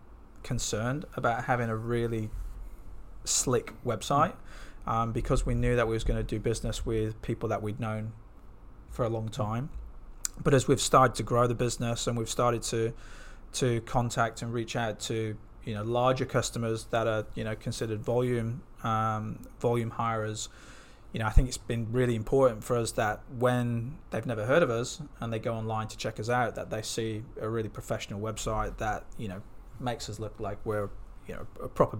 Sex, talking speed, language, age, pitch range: male, 190 wpm, English, 20-39, 110-125 Hz